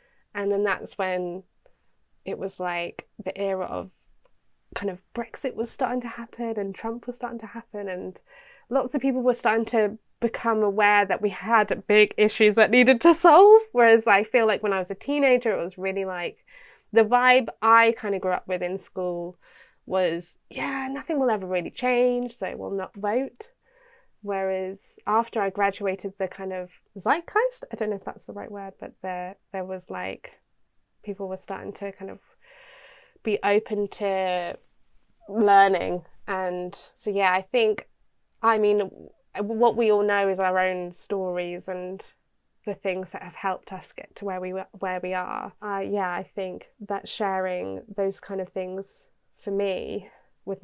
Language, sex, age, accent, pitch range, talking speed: English, female, 20-39, British, 190-230 Hz, 175 wpm